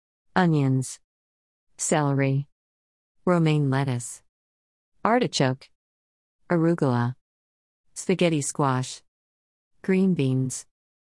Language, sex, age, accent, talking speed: English, female, 50-69, American, 55 wpm